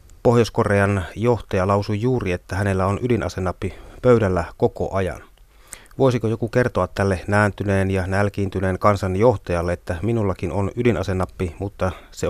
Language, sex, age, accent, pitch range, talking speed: Finnish, male, 30-49, native, 95-110 Hz, 120 wpm